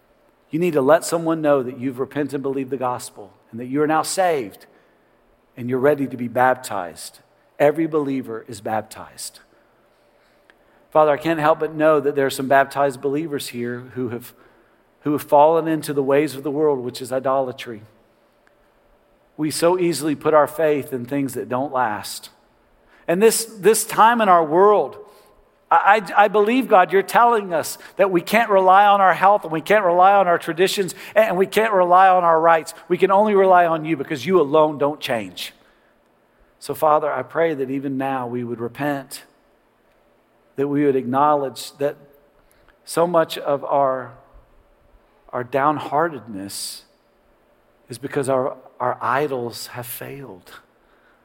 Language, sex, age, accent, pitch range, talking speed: English, male, 50-69, American, 130-165 Hz, 165 wpm